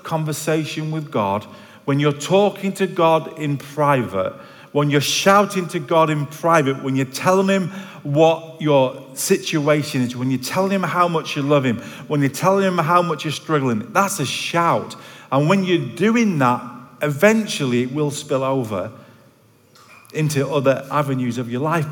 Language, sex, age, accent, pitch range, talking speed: English, male, 40-59, British, 130-170 Hz, 165 wpm